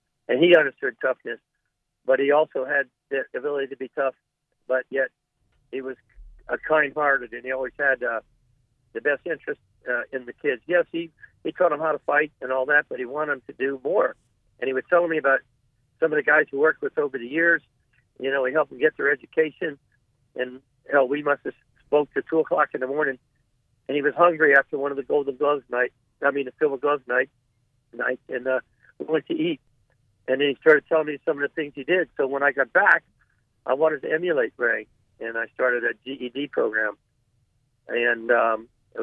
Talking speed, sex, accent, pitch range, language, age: 215 wpm, male, American, 125-155 Hz, English, 50-69